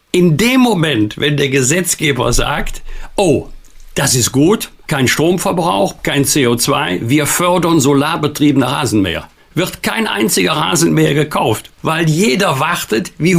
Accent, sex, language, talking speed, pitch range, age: German, male, German, 125 wpm, 140-175 Hz, 60-79